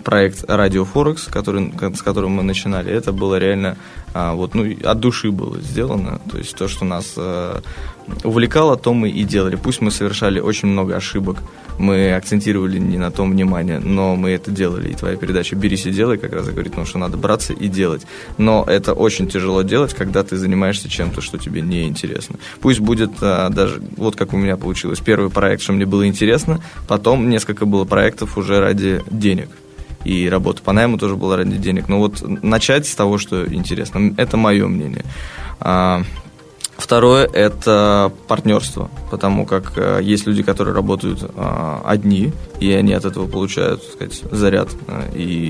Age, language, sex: 20-39, Russian, male